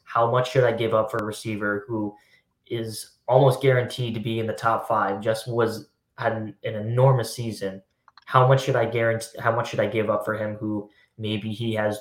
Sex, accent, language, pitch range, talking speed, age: male, American, English, 105-120 Hz, 215 wpm, 10-29